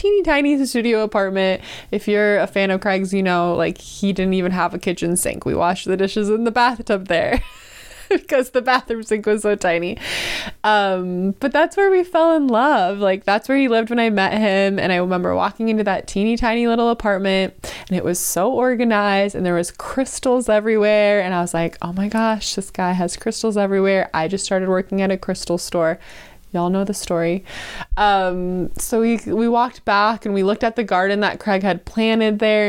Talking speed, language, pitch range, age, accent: 205 wpm, English, 185-225 Hz, 20-39, American